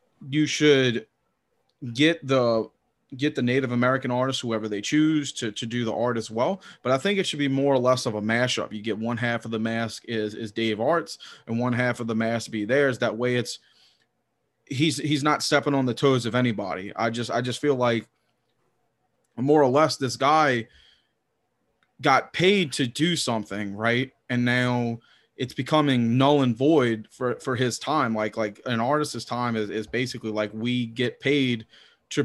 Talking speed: 190 wpm